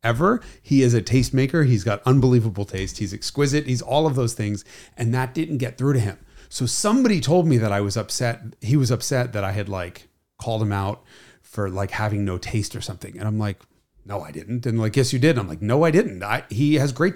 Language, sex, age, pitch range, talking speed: English, male, 30-49, 105-140 Hz, 240 wpm